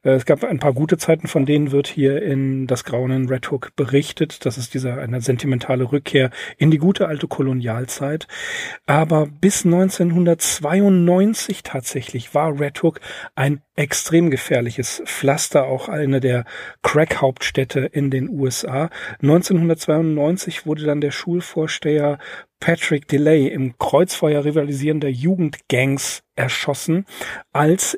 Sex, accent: male, German